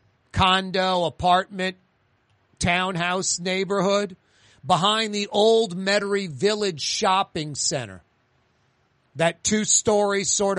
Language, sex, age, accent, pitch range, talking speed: English, male, 40-59, American, 125-175 Hz, 80 wpm